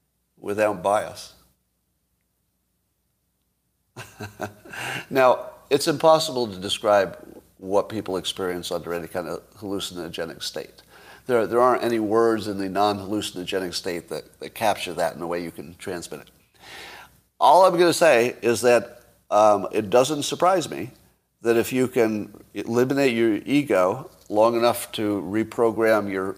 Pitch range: 95-125 Hz